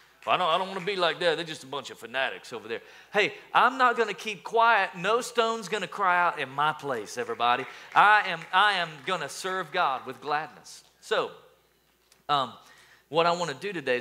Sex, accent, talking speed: male, American, 215 wpm